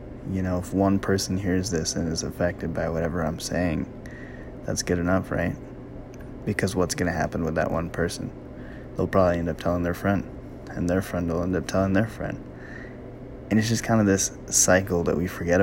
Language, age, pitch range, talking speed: English, 20-39, 90-115 Hz, 205 wpm